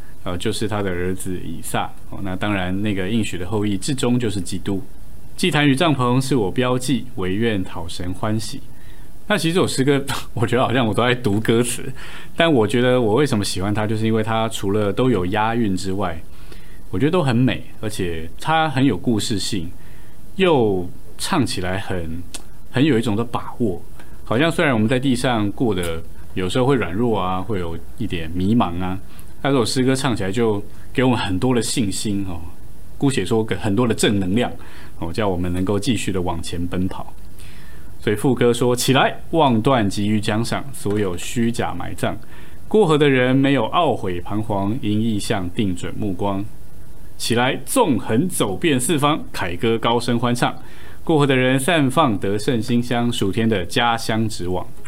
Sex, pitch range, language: male, 95-125 Hz, Chinese